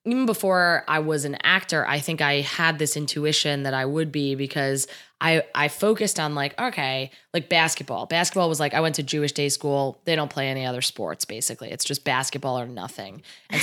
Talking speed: 205 wpm